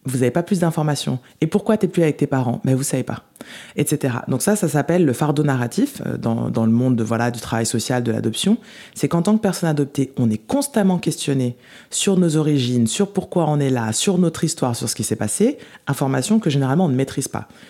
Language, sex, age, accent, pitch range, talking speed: French, female, 20-39, French, 120-180 Hz, 235 wpm